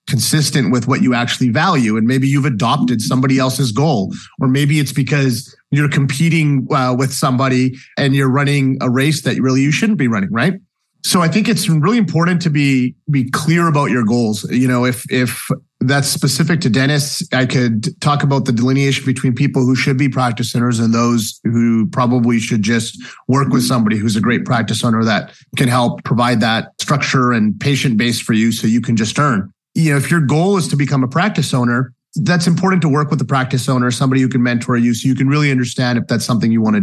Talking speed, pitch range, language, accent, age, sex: 215 wpm, 125-160 Hz, English, American, 30-49, male